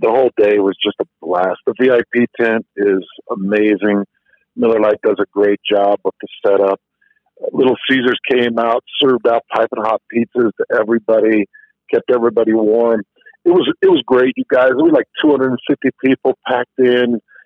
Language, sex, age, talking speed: English, male, 50-69, 170 wpm